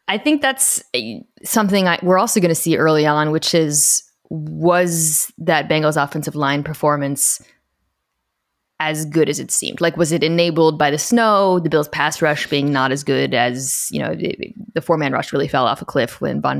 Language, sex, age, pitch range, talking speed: English, female, 20-39, 145-185 Hz, 190 wpm